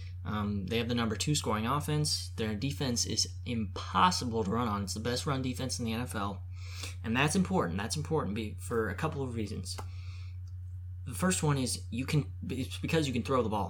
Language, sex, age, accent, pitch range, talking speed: English, male, 20-39, American, 90-120 Hz, 200 wpm